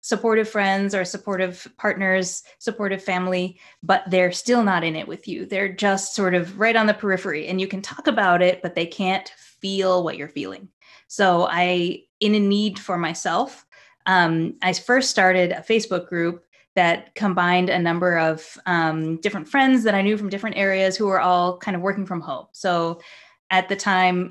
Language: English